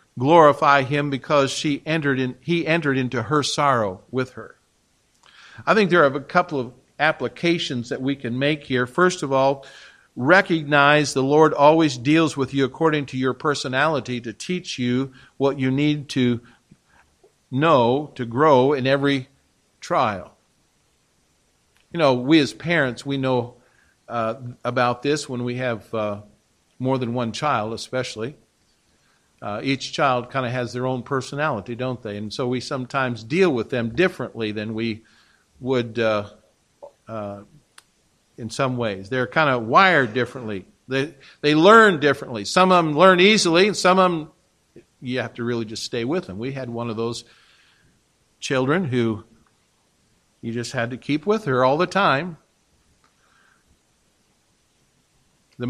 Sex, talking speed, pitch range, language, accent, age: male, 155 wpm, 120-150 Hz, English, American, 50-69